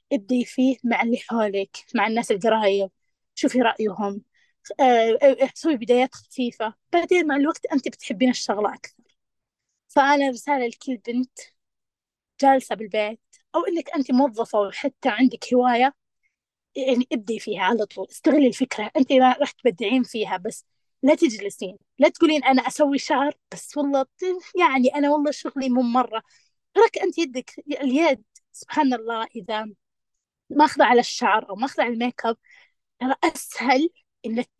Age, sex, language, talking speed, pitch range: 20-39, female, Arabic, 135 wpm, 235-285 Hz